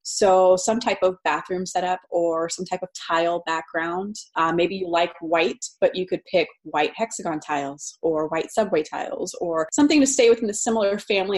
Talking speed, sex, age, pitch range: 190 wpm, female, 20-39, 175-220 Hz